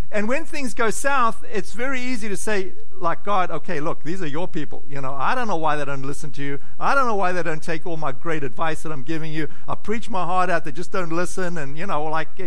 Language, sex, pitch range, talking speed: English, male, 145-200 Hz, 275 wpm